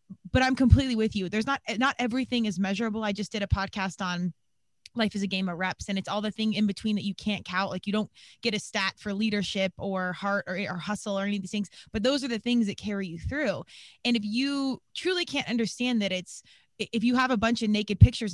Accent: American